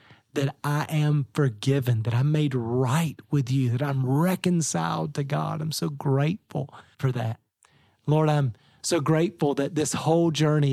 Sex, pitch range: male, 115-145 Hz